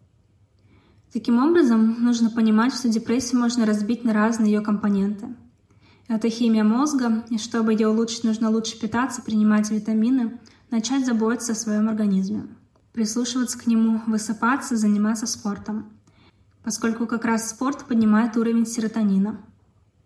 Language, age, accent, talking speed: Russian, 20-39, native, 125 wpm